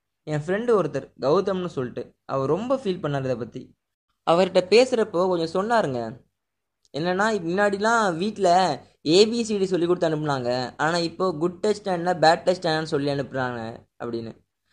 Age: 20-39